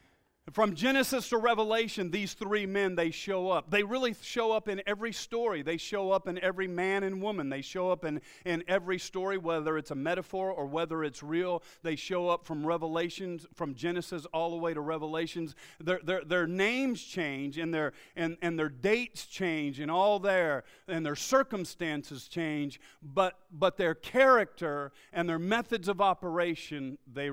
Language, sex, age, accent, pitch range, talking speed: English, male, 40-59, American, 150-190 Hz, 180 wpm